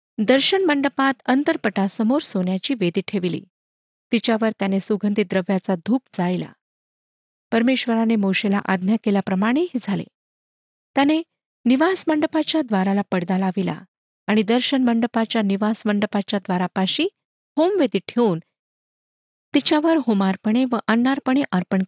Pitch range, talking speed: 195-260 Hz, 95 wpm